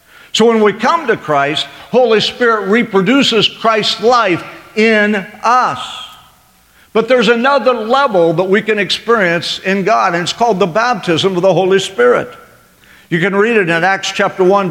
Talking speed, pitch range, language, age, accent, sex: 165 wpm, 185-235 Hz, English, 50-69, American, male